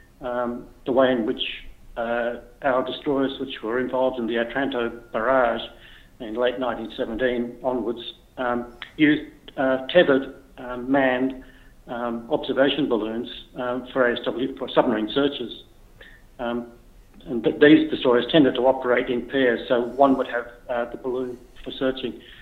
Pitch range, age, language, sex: 120-135 Hz, 60-79, English, male